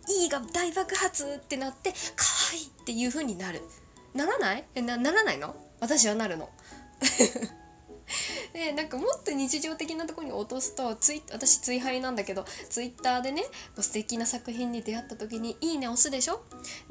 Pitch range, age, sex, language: 215-295 Hz, 20-39, female, Japanese